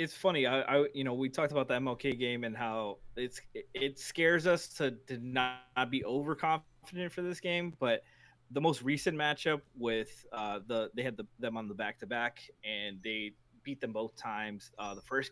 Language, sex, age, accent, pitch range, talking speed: English, male, 20-39, American, 120-155 Hz, 210 wpm